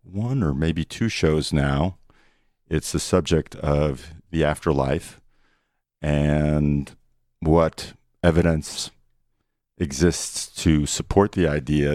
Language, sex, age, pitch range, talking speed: English, male, 50-69, 70-90 Hz, 100 wpm